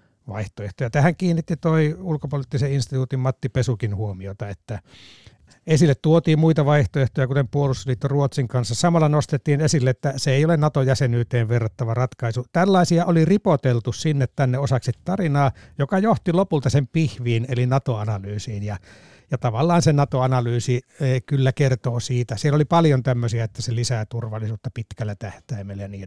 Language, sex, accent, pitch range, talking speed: Finnish, male, native, 110-140 Hz, 145 wpm